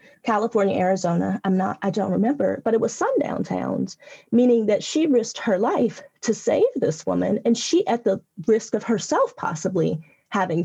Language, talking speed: English, 175 wpm